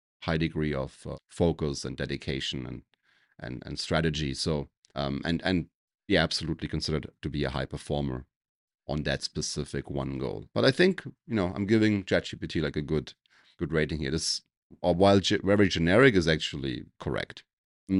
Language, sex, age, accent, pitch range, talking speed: English, male, 30-49, German, 75-100 Hz, 170 wpm